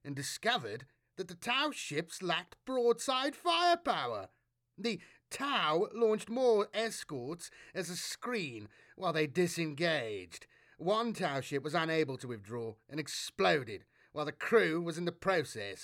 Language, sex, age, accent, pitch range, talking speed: English, male, 30-49, British, 130-205 Hz, 135 wpm